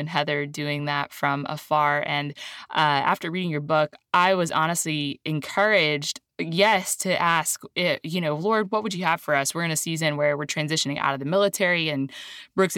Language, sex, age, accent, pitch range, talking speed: English, female, 20-39, American, 155-195 Hz, 195 wpm